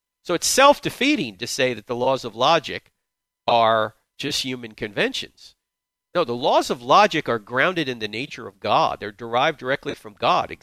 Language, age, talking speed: English, 50-69, 175 wpm